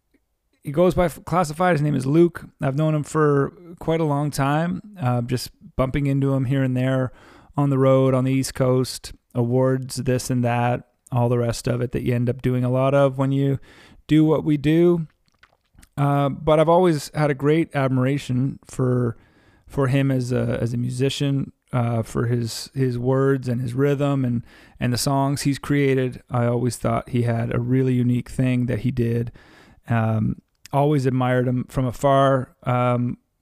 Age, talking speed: 30-49, 185 wpm